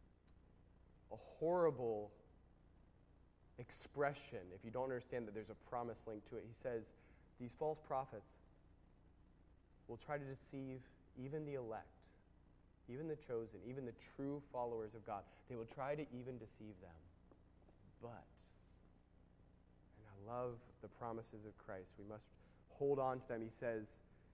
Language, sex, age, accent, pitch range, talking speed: English, male, 20-39, American, 105-130 Hz, 145 wpm